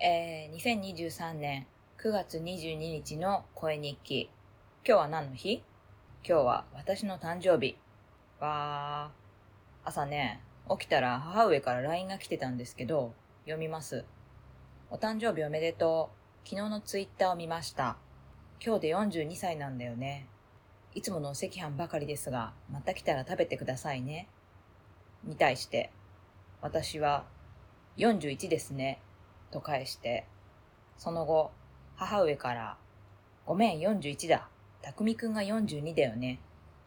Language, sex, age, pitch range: Japanese, female, 20-39, 110-165 Hz